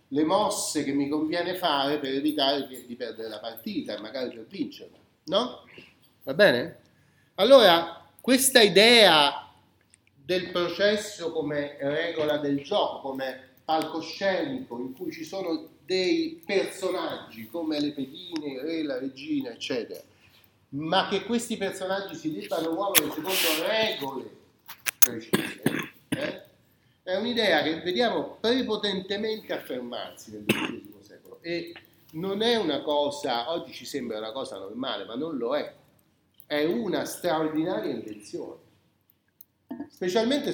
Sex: male